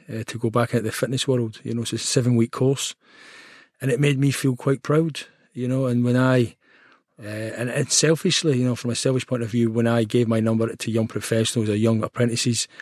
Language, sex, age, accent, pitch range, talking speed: English, male, 40-59, British, 110-125 Hz, 230 wpm